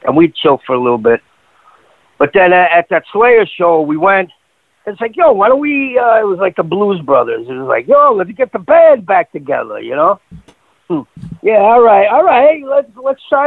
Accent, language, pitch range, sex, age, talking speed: American, English, 130-195 Hz, male, 50-69, 225 wpm